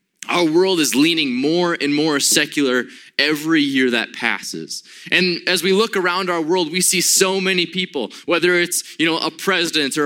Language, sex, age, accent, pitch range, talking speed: English, male, 20-39, American, 125-185 Hz, 185 wpm